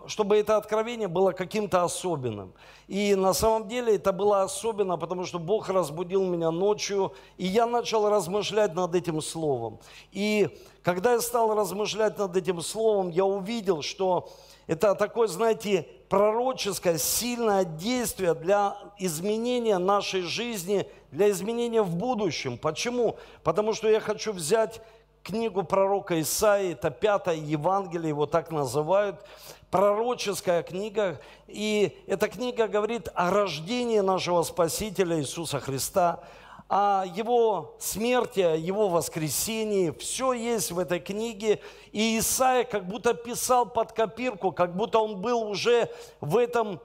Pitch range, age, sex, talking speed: 180-225 Hz, 50-69, male, 130 wpm